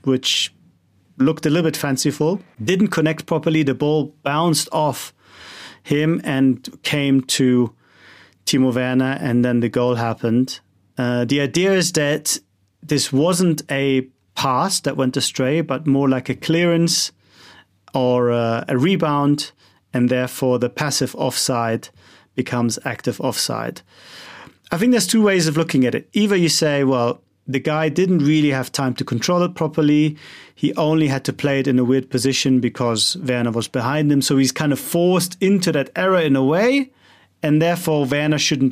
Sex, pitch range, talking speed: male, 125-165 Hz, 165 wpm